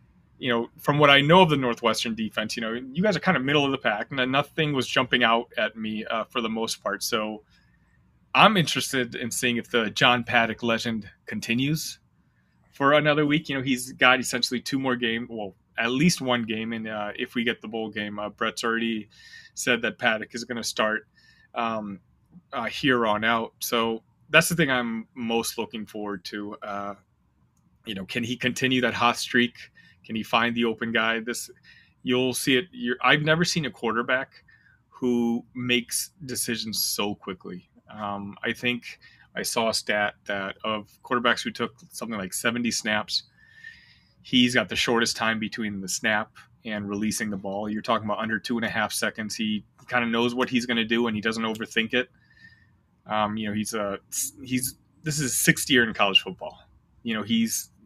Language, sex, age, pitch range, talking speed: English, male, 30-49, 110-125 Hz, 195 wpm